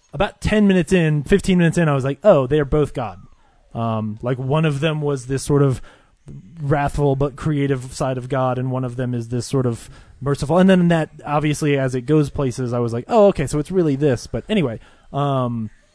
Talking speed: 220 wpm